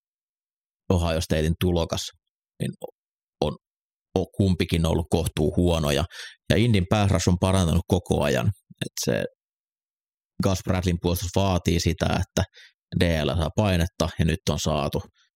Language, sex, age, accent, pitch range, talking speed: Finnish, male, 30-49, native, 80-95 Hz, 130 wpm